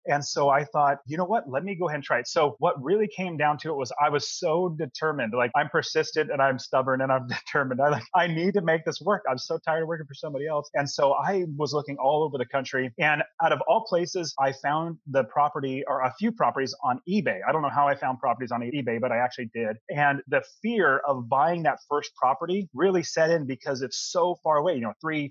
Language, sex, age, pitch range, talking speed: English, male, 30-49, 130-160 Hz, 255 wpm